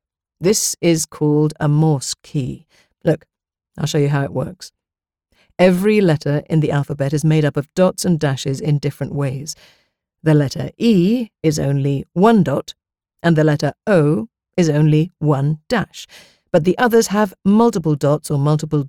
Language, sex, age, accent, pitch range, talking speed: English, female, 50-69, British, 145-180 Hz, 160 wpm